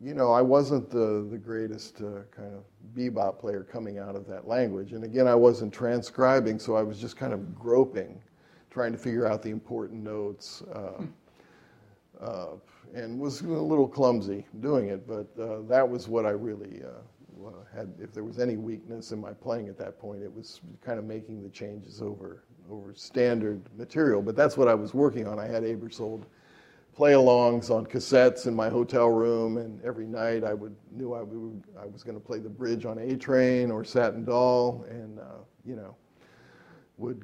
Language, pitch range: English, 105-120 Hz